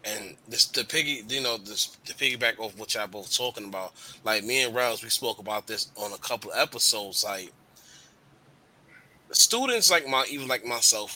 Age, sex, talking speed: 20-39, male, 190 wpm